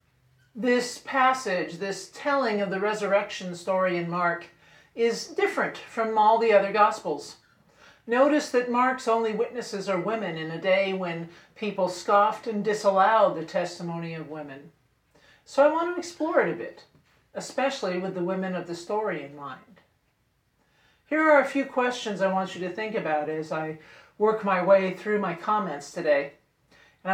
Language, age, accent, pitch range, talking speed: English, 50-69, American, 170-230 Hz, 165 wpm